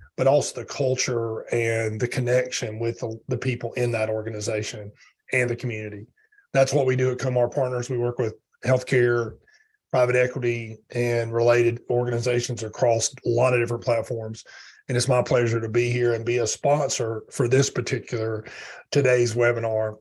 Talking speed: 165 wpm